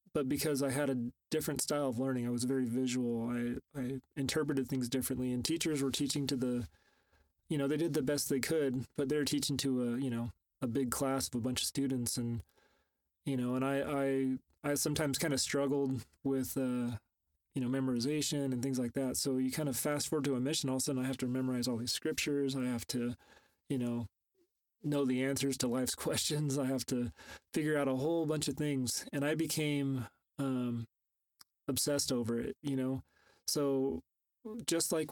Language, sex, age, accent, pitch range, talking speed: English, male, 30-49, American, 125-145 Hz, 205 wpm